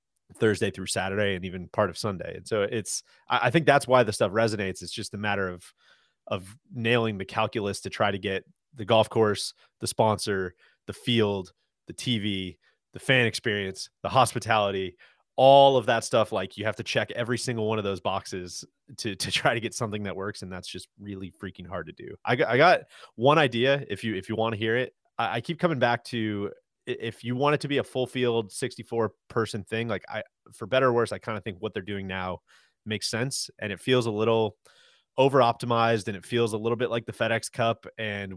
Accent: American